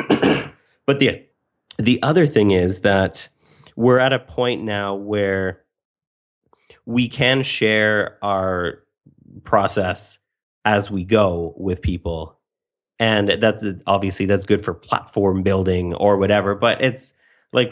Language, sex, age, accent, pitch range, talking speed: English, male, 30-49, American, 100-120 Hz, 120 wpm